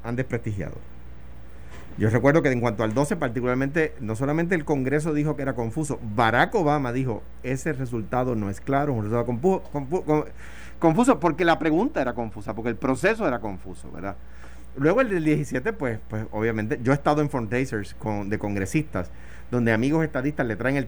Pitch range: 85-145 Hz